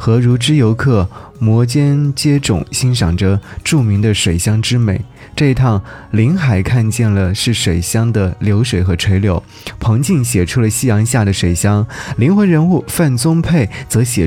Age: 20-39